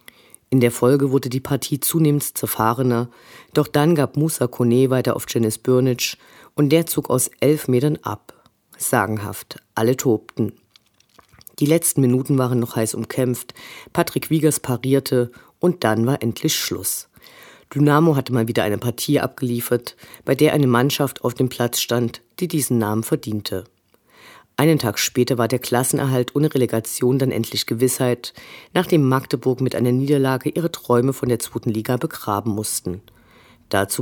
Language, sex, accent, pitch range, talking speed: German, female, German, 115-140 Hz, 150 wpm